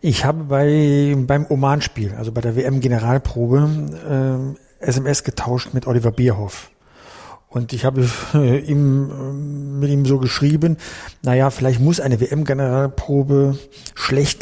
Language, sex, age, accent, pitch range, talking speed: German, male, 50-69, German, 130-150 Hz, 115 wpm